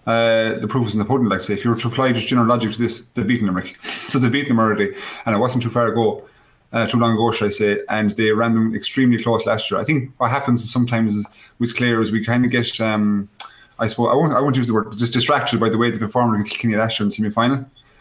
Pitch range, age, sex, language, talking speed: 110-120 Hz, 30-49, male, English, 295 wpm